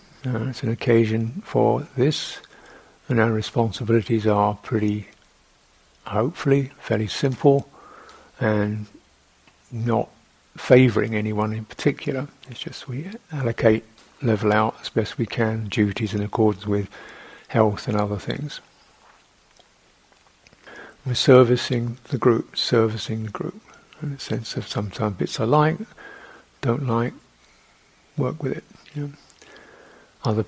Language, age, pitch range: English, 50-69, 110-135 Hz